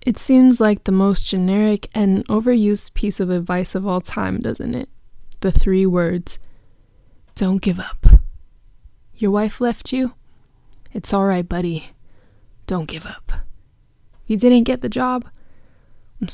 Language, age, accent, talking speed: English, 10-29, American, 145 wpm